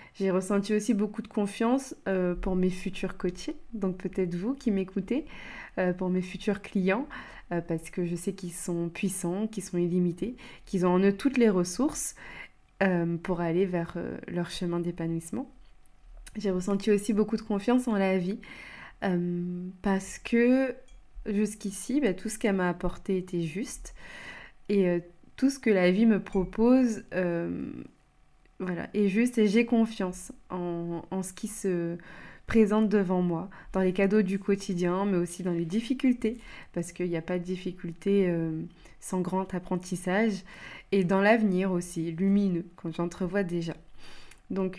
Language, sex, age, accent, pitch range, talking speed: French, female, 20-39, French, 180-215 Hz, 160 wpm